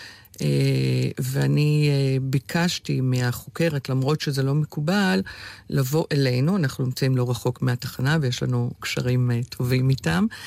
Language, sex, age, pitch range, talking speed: Hebrew, female, 50-69, 125-160 Hz, 110 wpm